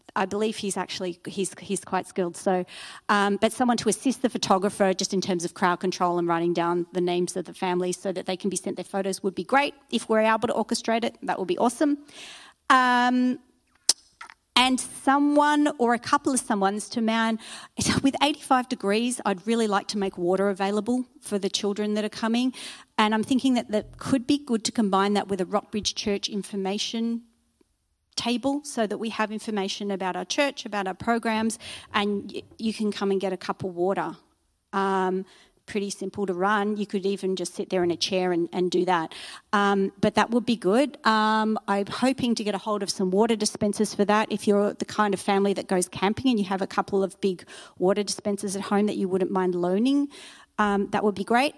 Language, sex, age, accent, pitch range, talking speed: English, female, 40-59, Australian, 190-230 Hz, 210 wpm